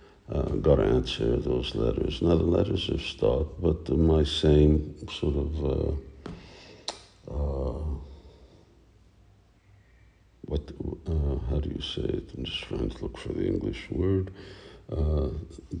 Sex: male